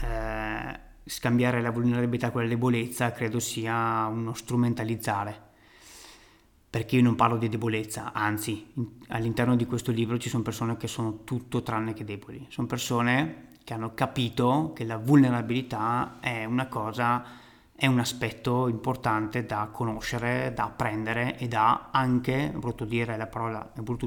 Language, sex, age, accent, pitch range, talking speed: Italian, male, 30-49, native, 115-125 Hz, 135 wpm